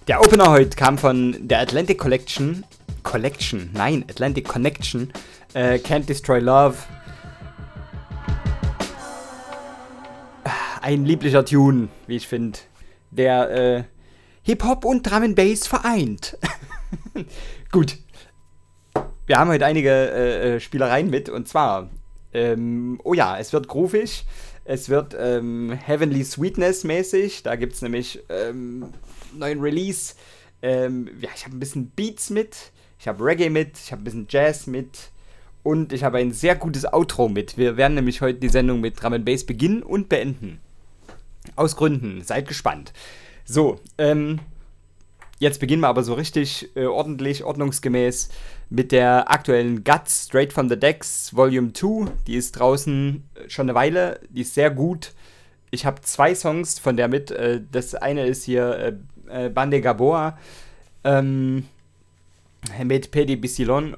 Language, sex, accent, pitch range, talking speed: German, male, German, 120-150 Hz, 140 wpm